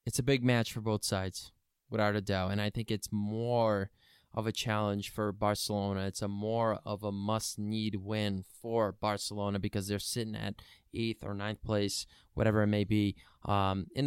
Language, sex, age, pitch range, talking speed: English, male, 20-39, 100-110 Hz, 185 wpm